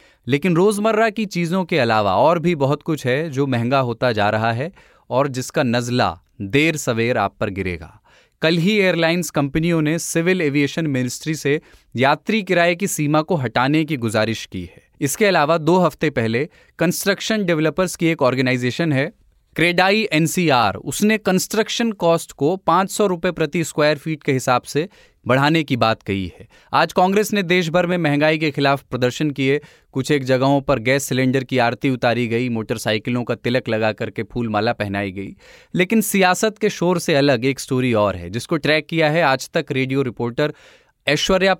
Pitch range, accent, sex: 125-170 Hz, native, male